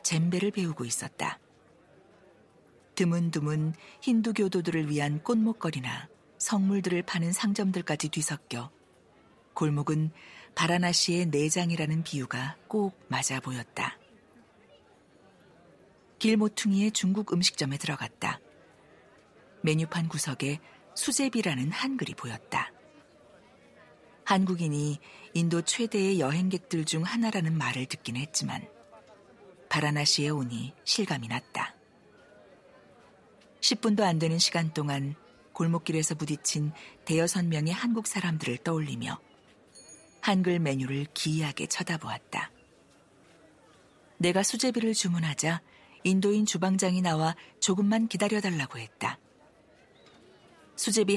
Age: 50-69